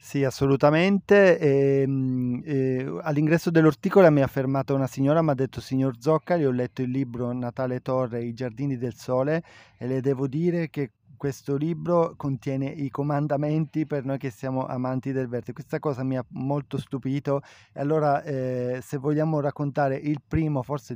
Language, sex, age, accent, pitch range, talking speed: Italian, male, 30-49, native, 125-145 Hz, 165 wpm